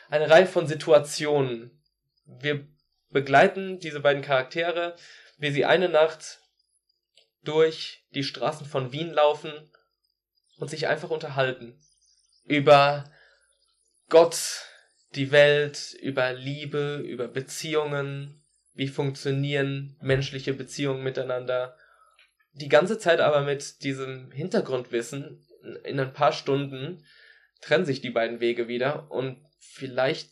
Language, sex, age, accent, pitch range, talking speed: German, male, 20-39, German, 130-155 Hz, 110 wpm